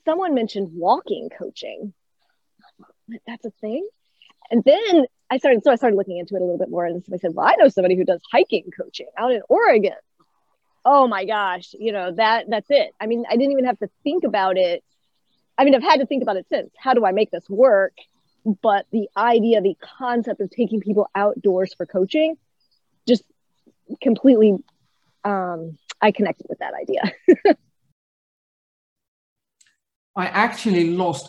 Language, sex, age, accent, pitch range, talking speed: English, female, 30-49, American, 140-220 Hz, 175 wpm